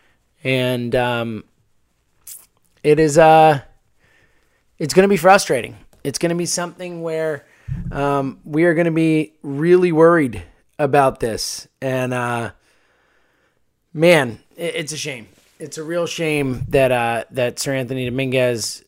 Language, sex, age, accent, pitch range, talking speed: English, male, 20-39, American, 115-160 Hz, 135 wpm